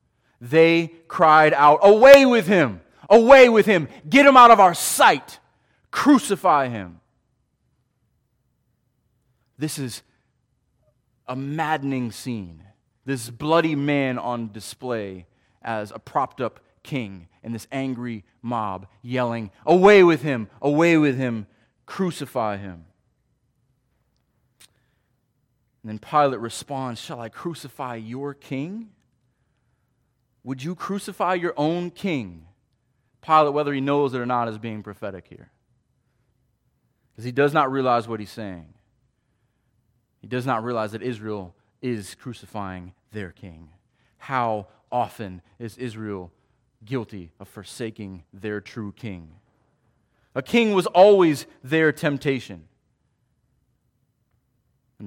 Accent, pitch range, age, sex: American, 110-140 Hz, 30-49, male